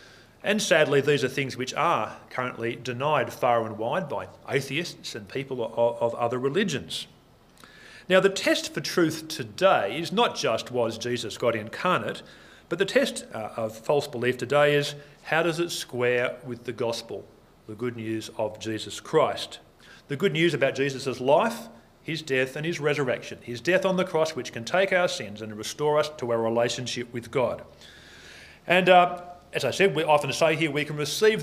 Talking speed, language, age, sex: 180 wpm, English, 40-59, male